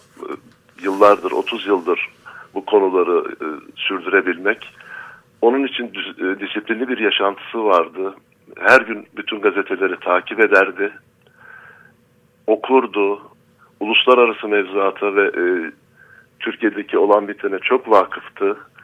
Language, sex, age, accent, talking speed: Turkish, male, 60-79, native, 90 wpm